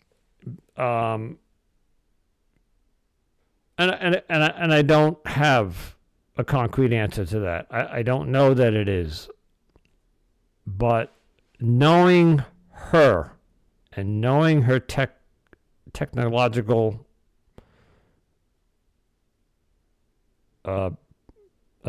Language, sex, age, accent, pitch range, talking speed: English, male, 60-79, American, 100-140 Hz, 80 wpm